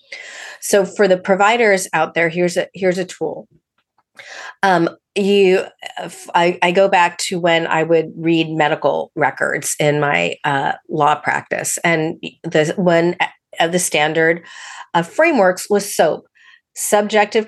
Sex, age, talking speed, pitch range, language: female, 40-59, 135 wpm, 160-195 Hz, English